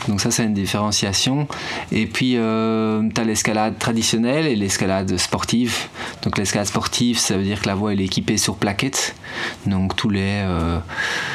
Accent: French